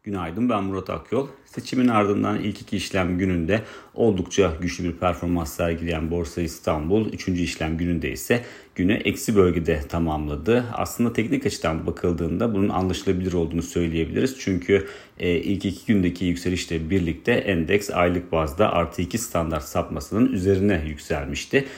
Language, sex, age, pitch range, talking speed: Turkish, male, 40-59, 85-100 Hz, 130 wpm